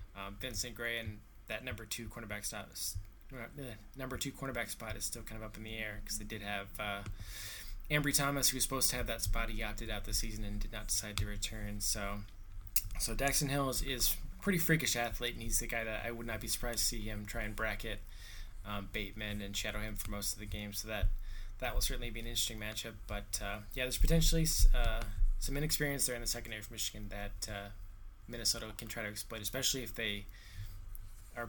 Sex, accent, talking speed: male, American, 225 wpm